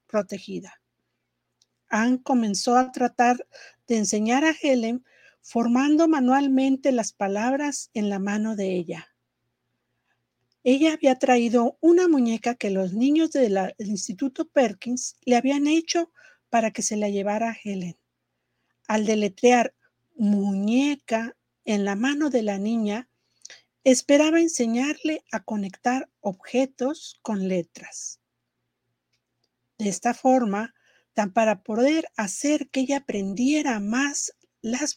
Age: 50-69